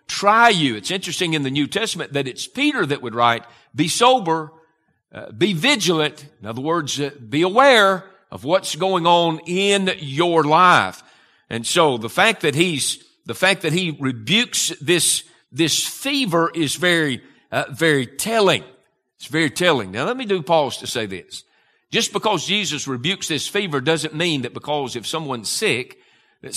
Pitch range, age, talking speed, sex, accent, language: 130-185 Hz, 50-69, 170 wpm, male, American, English